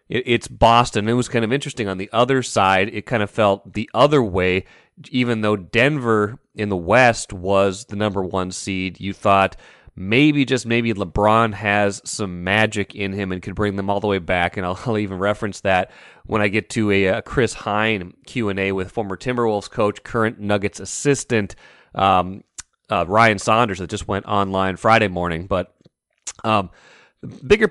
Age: 30-49